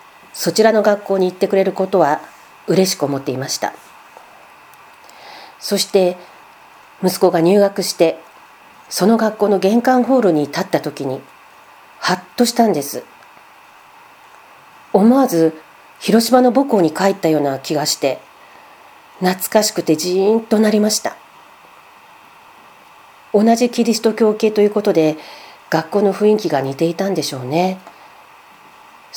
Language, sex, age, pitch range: Japanese, female, 40-59, 160-215 Hz